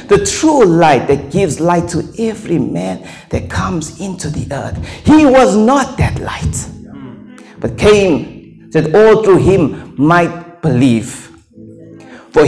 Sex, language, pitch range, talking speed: male, English, 130-210 Hz, 135 wpm